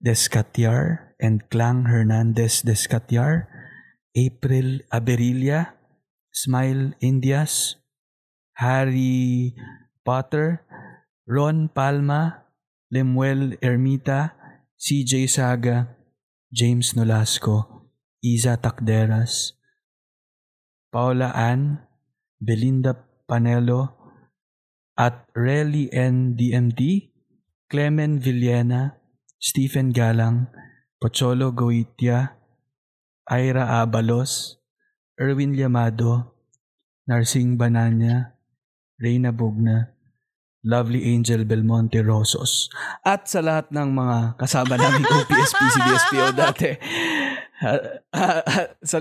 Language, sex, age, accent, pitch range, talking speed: Filipino, male, 20-39, native, 120-135 Hz, 70 wpm